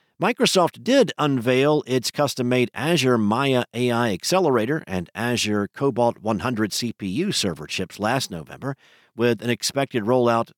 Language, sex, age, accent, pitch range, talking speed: English, male, 50-69, American, 105-135 Hz, 125 wpm